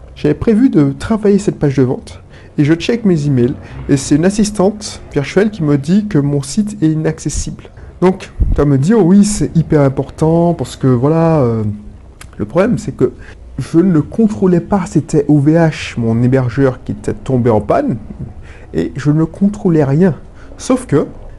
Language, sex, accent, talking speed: French, male, French, 180 wpm